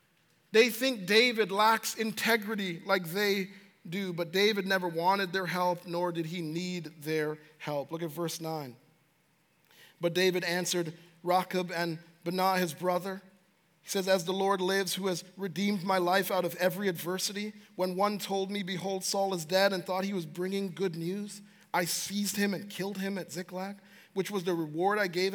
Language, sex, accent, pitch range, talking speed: English, male, American, 175-205 Hz, 180 wpm